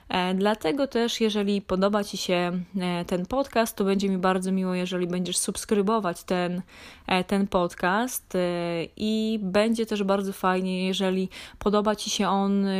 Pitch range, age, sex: 185-220 Hz, 20-39, female